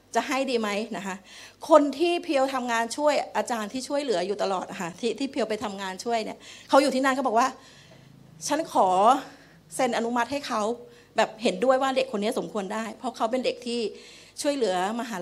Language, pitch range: Thai, 220-285 Hz